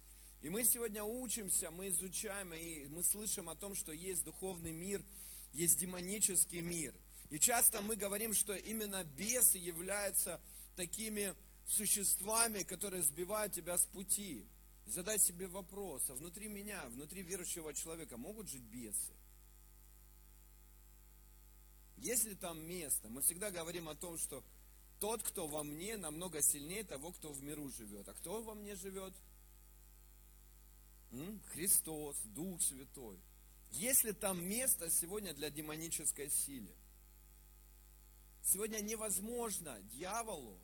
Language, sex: Russian, male